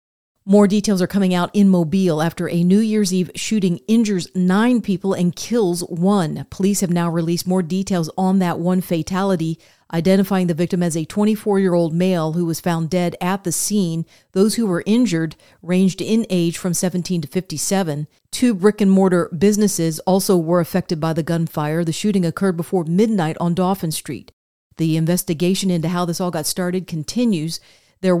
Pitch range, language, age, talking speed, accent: 170-195 Hz, English, 40-59, 170 wpm, American